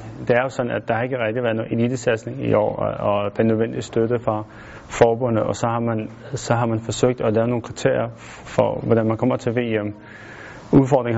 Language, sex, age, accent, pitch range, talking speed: Danish, male, 30-49, native, 110-130 Hz, 215 wpm